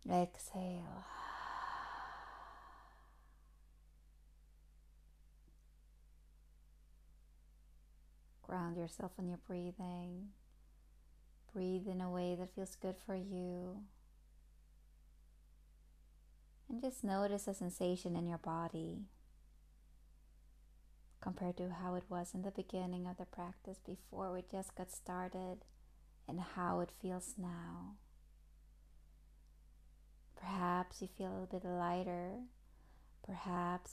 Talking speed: 90 wpm